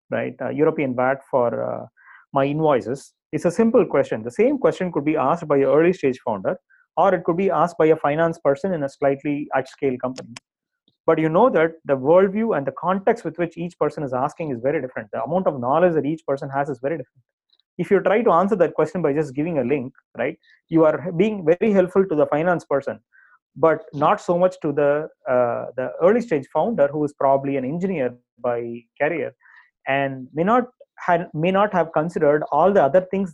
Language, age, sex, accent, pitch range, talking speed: English, 30-49, male, Indian, 140-180 Hz, 215 wpm